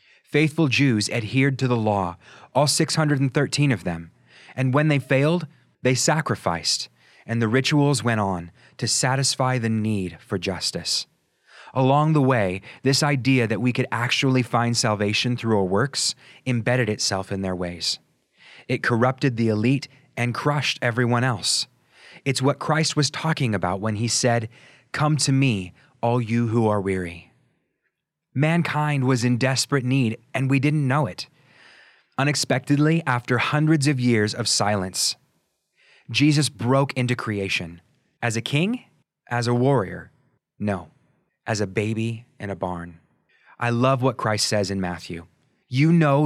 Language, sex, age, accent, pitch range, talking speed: English, male, 30-49, American, 110-140 Hz, 150 wpm